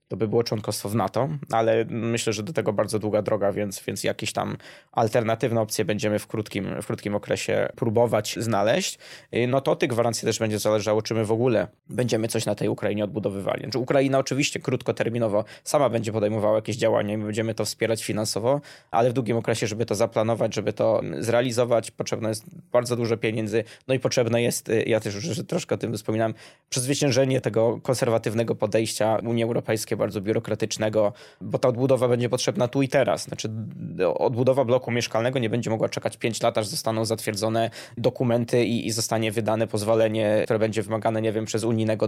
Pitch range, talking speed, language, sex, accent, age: 110-120 Hz, 185 wpm, Polish, male, native, 20-39